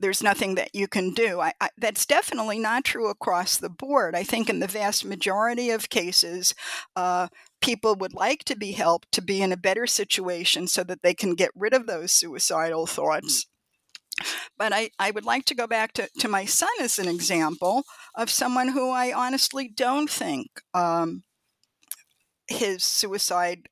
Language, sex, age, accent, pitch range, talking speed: English, female, 50-69, American, 185-240 Hz, 175 wpm